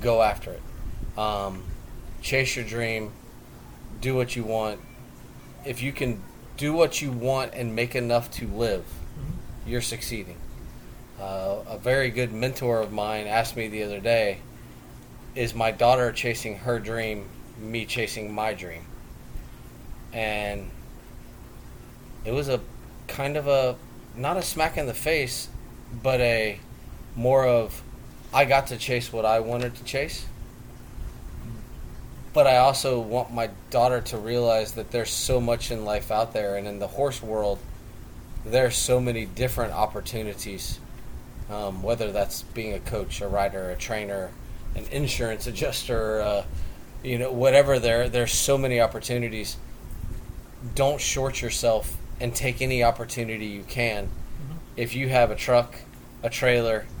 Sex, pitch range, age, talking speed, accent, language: male, 105-125 Hz, 30-49, 145 wpm, American, English